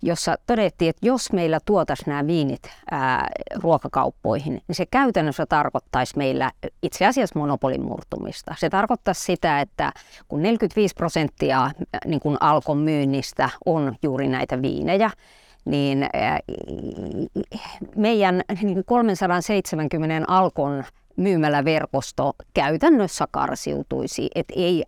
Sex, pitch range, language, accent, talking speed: female, 150-210 Hz, Finnish, native, 100 wpm